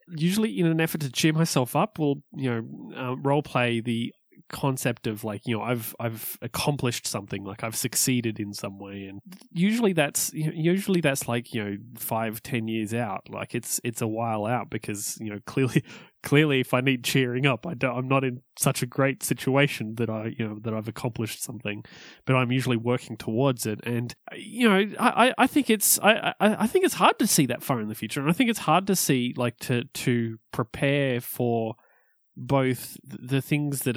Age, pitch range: 20-39, 115-155 Hz